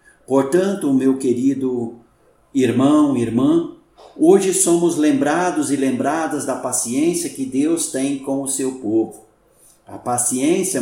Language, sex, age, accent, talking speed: Portuguese, male, 50-69, Brazilian, 115 wpm